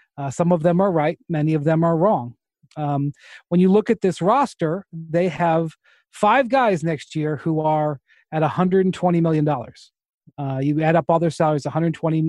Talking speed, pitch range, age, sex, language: 180 wpm, 135-165 Hz, 40-59, male, English